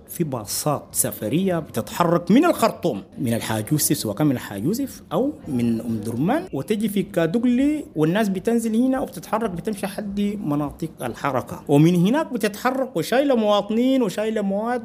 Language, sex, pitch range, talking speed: English, male, 130-195 Hz, 135 wpm